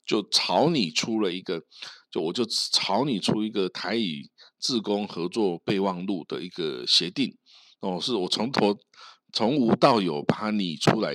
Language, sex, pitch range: Chinese, male, 95-110 Hz